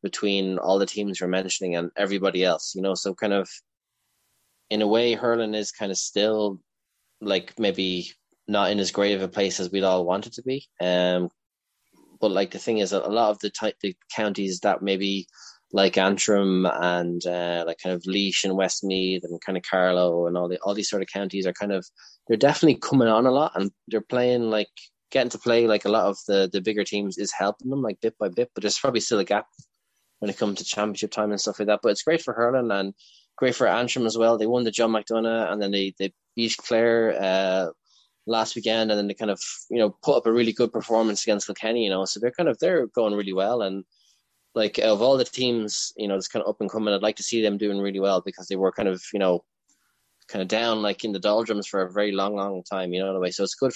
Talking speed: 250 wpm